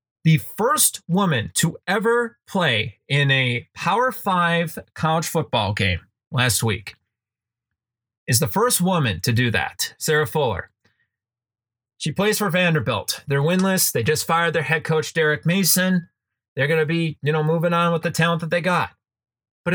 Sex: male